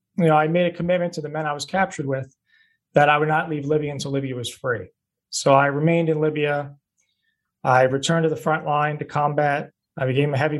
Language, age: English, 30-49